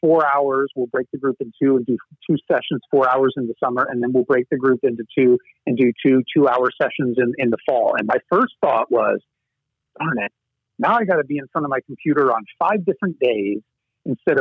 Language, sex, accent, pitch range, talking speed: English, male, American, 125-150 Hz, 235 wpm